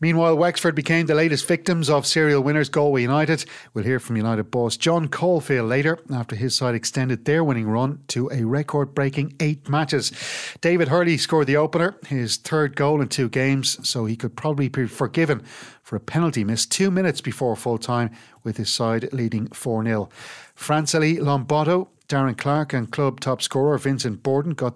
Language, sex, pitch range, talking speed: English, male, 120-155 Hz, 175 wpm